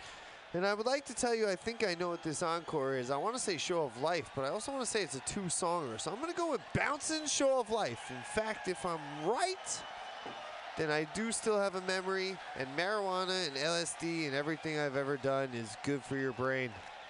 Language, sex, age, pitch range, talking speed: English, male, 20-39, 135-190 Hz, 240 wpm